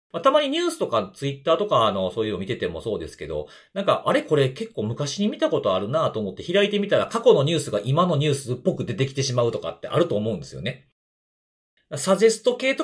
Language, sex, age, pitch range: Japanese, male, 40-59, 130-215 Hz